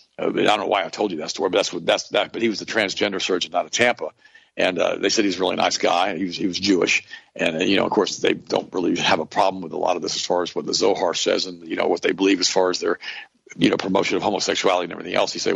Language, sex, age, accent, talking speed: English, male, 50-69, American, 315 wpm